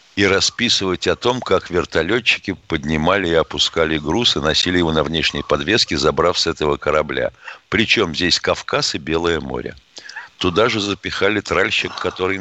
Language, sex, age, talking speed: Russian, male, 60-79, 150 wpm